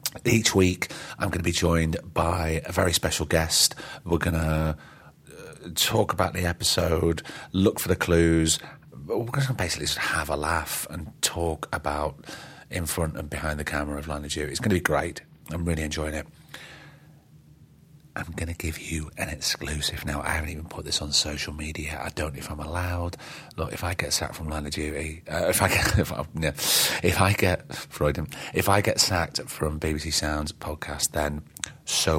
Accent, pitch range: British, 75-90 Hz